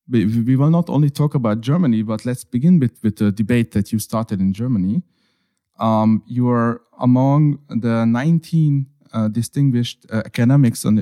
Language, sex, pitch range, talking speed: Hungarian, male, 110-140 Hz, 170 wpm